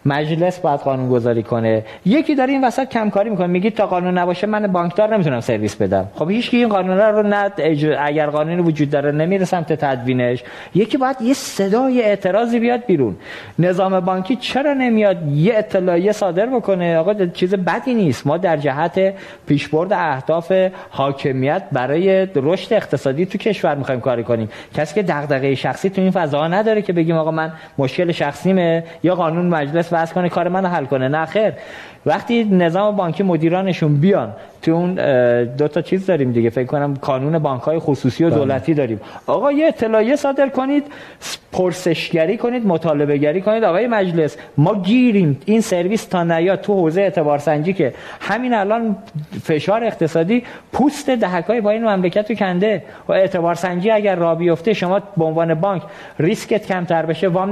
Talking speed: 165 wpm